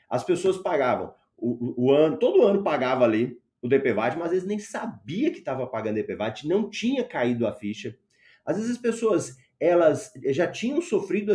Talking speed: 185 wpm